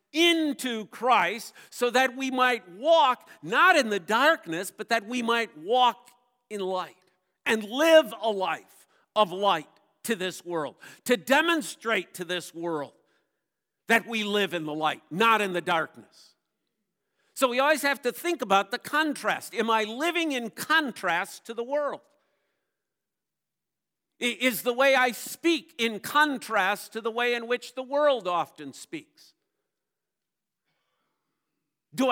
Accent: American